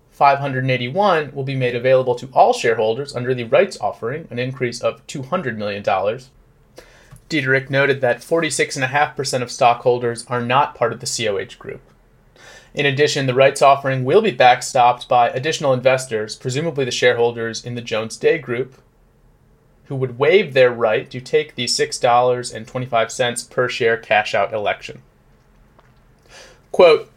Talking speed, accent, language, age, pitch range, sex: 140 wpm, American, English, 30-49, 120-145 Hz, male